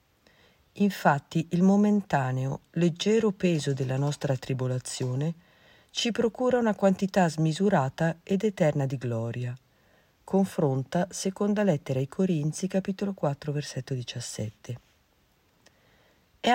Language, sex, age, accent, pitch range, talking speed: Italian, female, 50-69, native, 135-195 Hz, 100 wpm